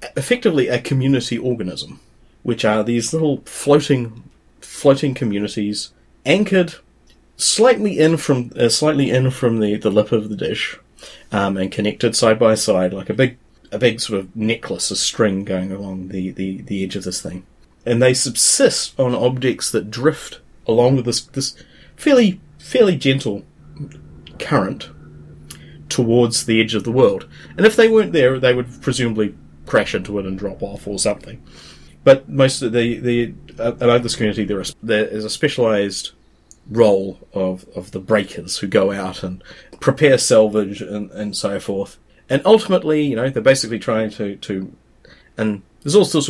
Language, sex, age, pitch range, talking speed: English, male, 30-49, 100-130 Hz, 170 wpm